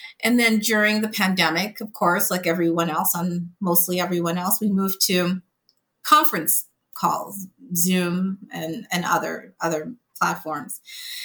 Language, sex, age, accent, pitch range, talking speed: English, female, 30-49, American, 175-220 Hz, 135 wpm